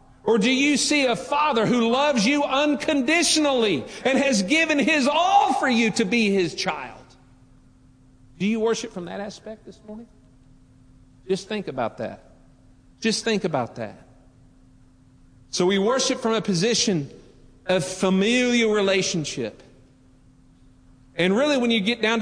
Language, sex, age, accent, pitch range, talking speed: English, male, 40-59, American, 185-250 Hz, 140 wpm